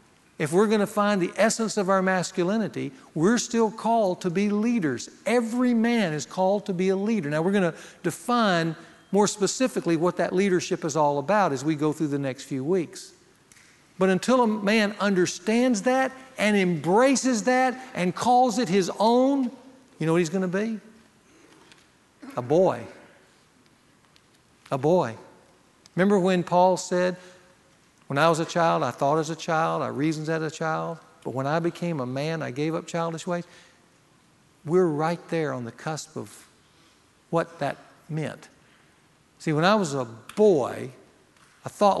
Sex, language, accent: male, English, American